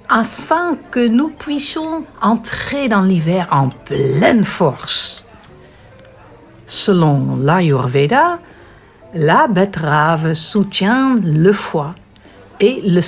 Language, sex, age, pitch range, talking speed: French, female, 60-79, 150-245 Hz, 85 wpm